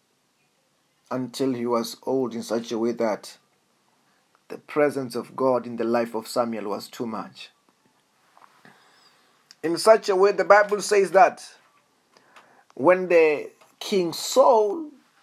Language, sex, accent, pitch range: English, male, South African, 135-215 Hz